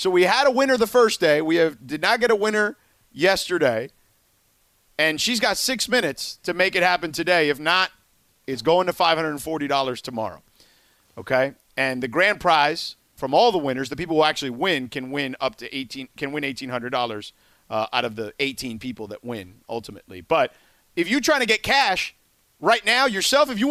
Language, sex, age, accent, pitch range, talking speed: English, male, 40-59, American, 145-235 Hz, 190 wpm